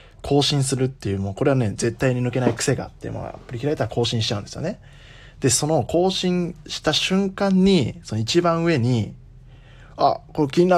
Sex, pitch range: male, 115-145 Hz